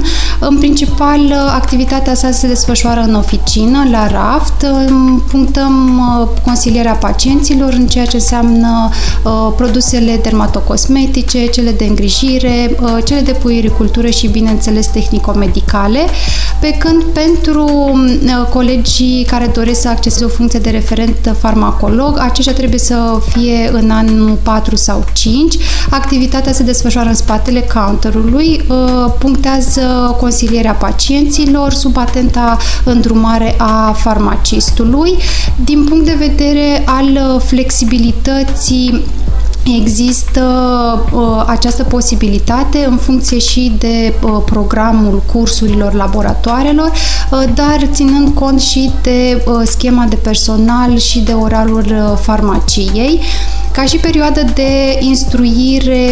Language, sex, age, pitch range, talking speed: Romanian, female, 20-39, 225-265 Hz, 110 wpm